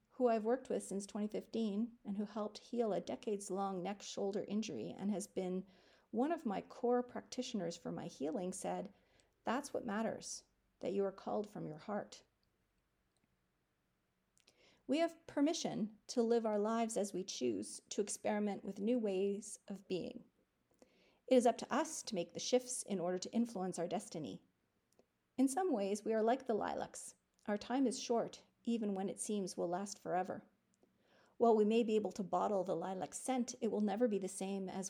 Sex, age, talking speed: female, 40-59, 180 wpm